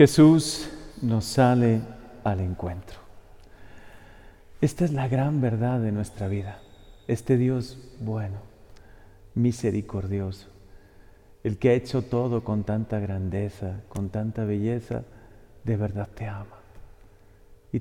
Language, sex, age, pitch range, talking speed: Spanish, male, 50-69, 100-125 Hz, 110 wpm